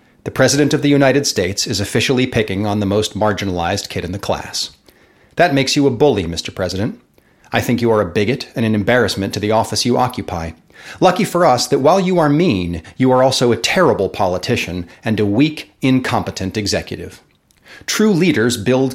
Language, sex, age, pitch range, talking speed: English, male, 40-59, 100-135 Hz, 190 wpm